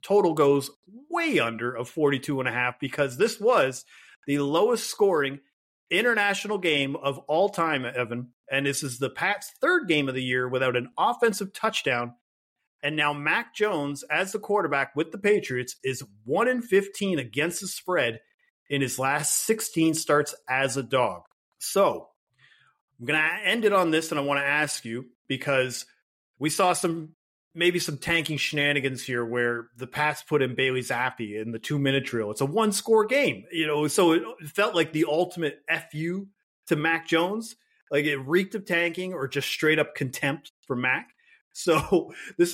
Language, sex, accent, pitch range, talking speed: English, male, American, 135-180 Hz, 175 wpm